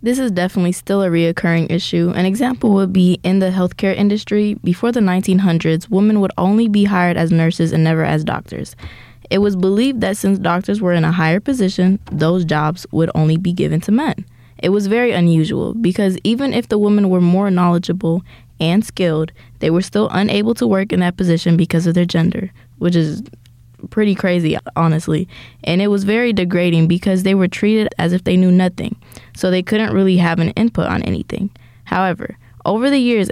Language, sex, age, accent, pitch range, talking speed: English, female, 20-39, American, 170-200 Hz, 195 wpm